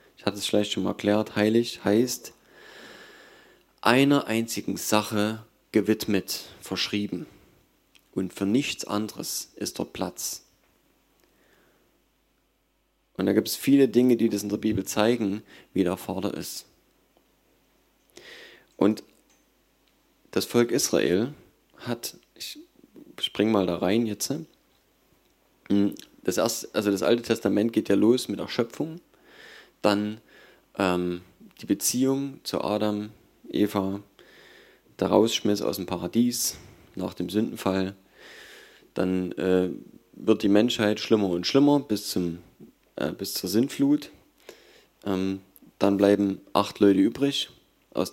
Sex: male